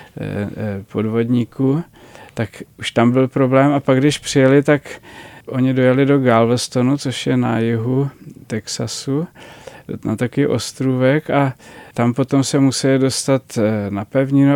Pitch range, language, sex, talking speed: 120-140 Hz, Czech, male, 130 wpm